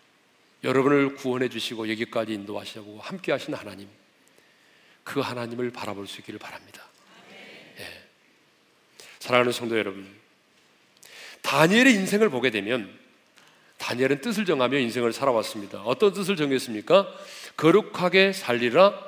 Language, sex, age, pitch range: Korean, male, 40-59, 135-220 Hz